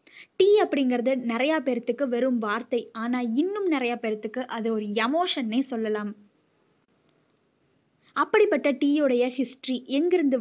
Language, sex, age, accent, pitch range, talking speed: Tamil, female, 20-39, native, 235-295 Hz, 105 wpm